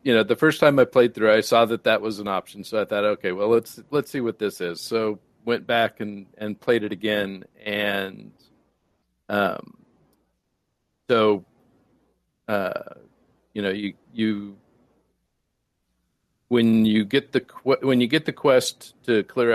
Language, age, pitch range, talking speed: English, 50-69, 95-110 Hz, 165 wpm